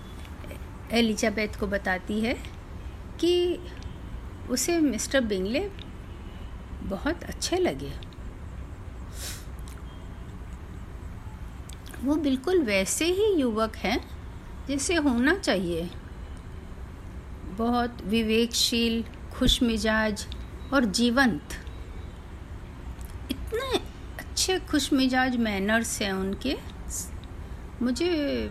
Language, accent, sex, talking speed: Hindi, native, female, 65 wpm